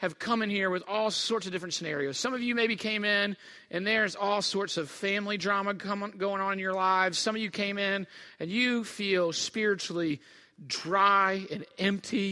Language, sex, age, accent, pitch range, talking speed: English, male, 40-59, American, 155-200 Hz, 195 wpm